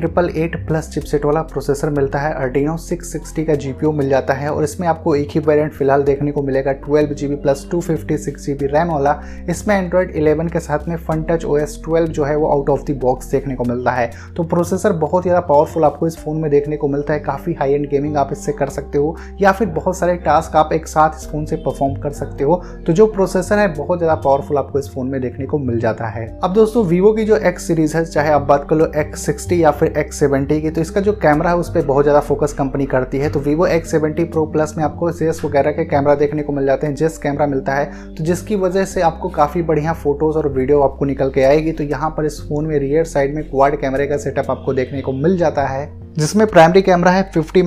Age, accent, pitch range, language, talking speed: 20-39, native, 140-165 Hz, Hindi, 235 wpm